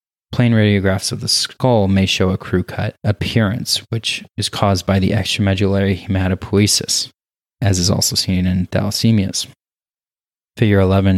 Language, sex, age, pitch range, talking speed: English, male, 20-39, 95-110 Hz, 130 wpm